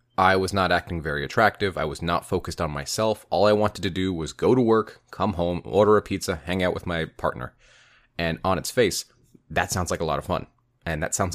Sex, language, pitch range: male, English, 85-110 Hz